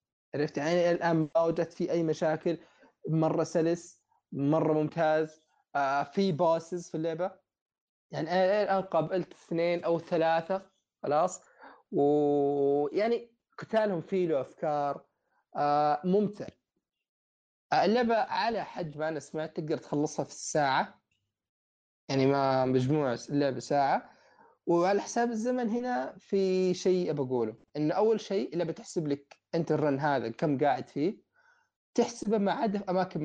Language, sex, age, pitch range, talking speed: Arabic, male, 20-39, 150-190 Hz, 125 wpm